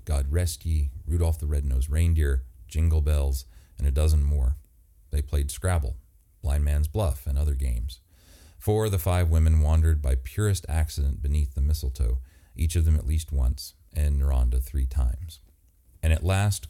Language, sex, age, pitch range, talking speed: English, male, 40-59, 75-85 Hz, 170 wpm